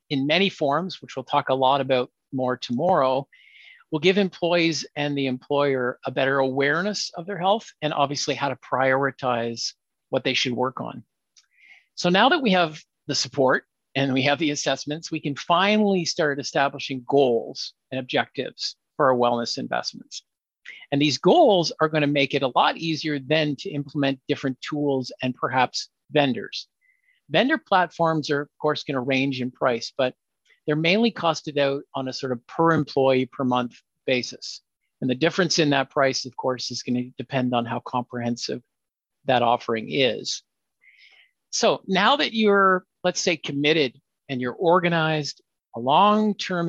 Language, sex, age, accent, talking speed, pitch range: English, male, 50-69, American, 165 wpm, 130-165 Hz